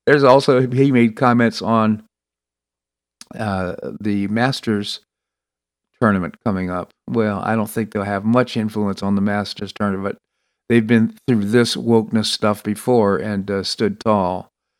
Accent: American